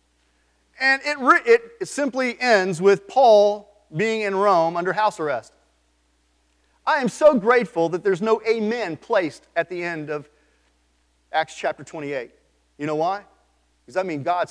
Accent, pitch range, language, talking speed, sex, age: American, 125-215 Hz, English, 155 wpm, male, 40-59